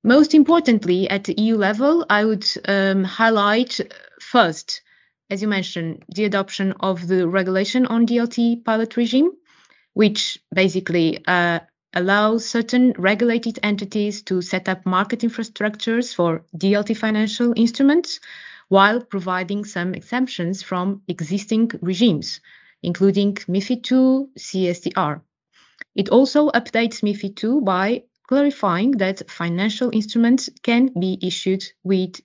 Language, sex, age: English, female, 20-39